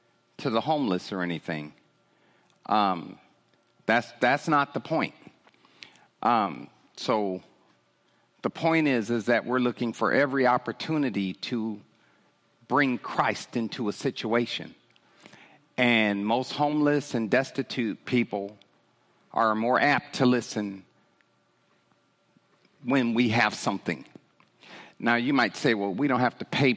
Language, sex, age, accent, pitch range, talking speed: English, male, 50-69, American, 95-125 Hz, 120 wpm